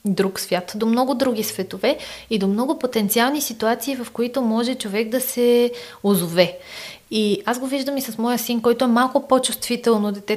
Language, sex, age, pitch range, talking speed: Bulgarian, female, 20-39, 200-245 Hz, 180 wpm